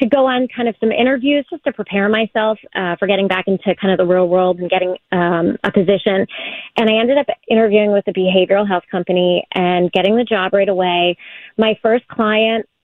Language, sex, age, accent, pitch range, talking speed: English, female, 30-49, American, 190-225 Hz, 210 wpm